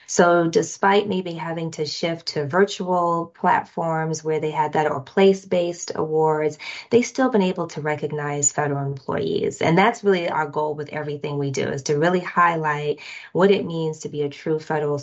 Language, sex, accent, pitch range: English, female, American, 150-170 Hz